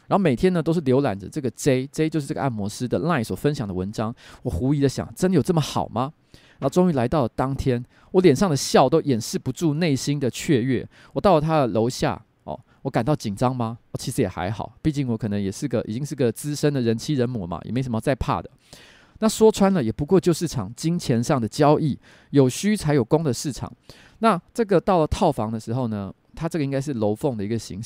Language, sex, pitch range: Chinese, male, 115-150 Hz